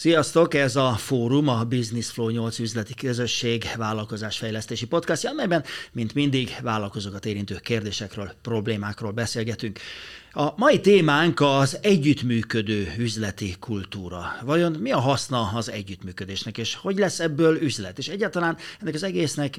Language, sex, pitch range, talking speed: Hungarian, male, 105-135 Hz, 130 wpm